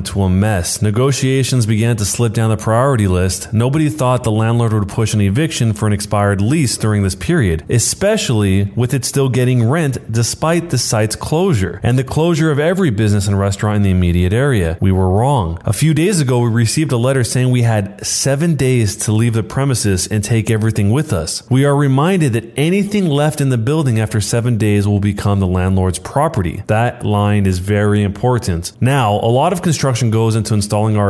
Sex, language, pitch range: male, English, 105-140 Hz